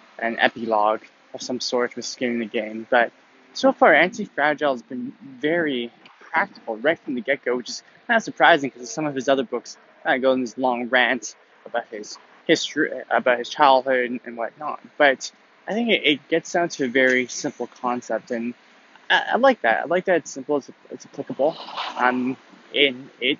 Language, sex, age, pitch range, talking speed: English, male, 20-39, 120-150 Hz, 195 wpm